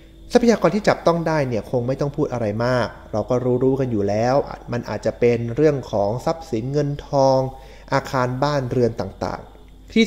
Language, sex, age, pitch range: Thai, male, 20-39, 120-165 Hz